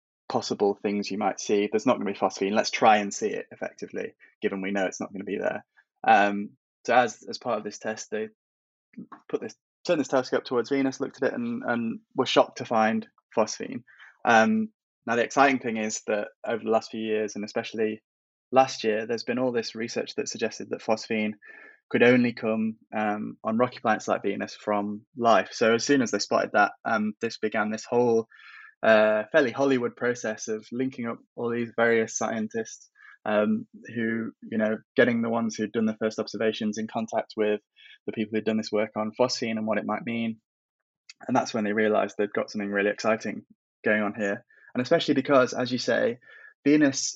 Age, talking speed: 20-39, 205 wpm